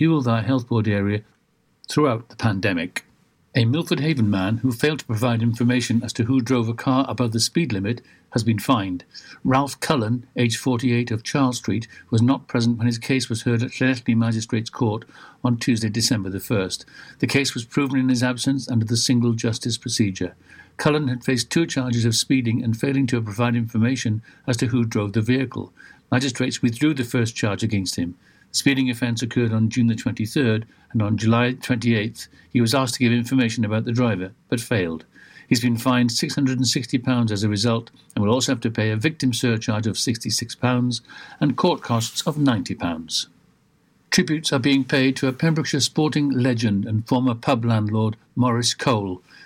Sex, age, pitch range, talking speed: male, 60-79, 115-130 Hz, 180 wpm